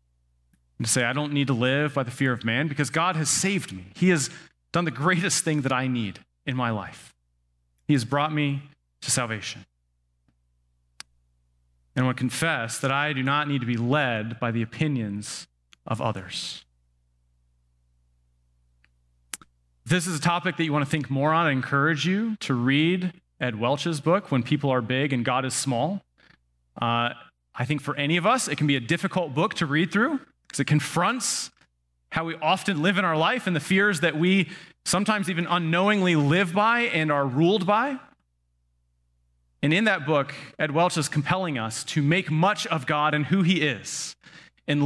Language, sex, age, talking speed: English, male, 30-49, 185 wpm